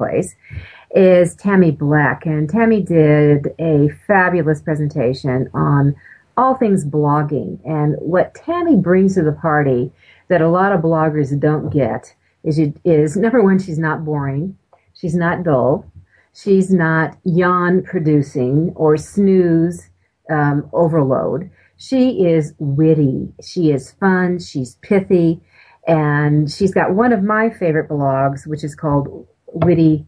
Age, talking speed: 40-59, 135 wpm